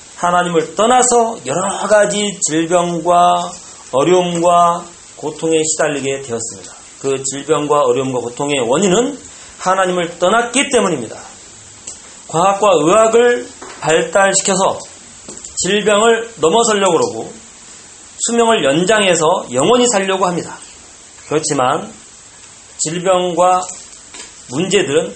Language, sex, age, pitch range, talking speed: English, male, 40-59, 165-225 Hz, 75 wpm